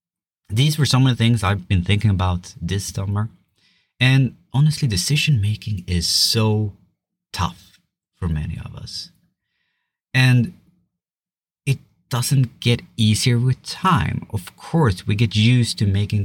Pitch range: 95-135 Hz